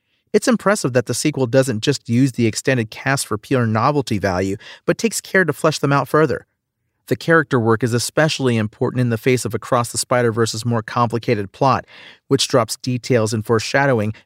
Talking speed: 185 wpm